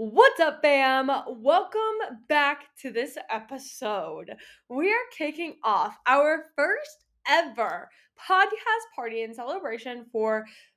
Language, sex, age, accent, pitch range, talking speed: English, female, 10-29, American, 230-310 Hz, 110 wpm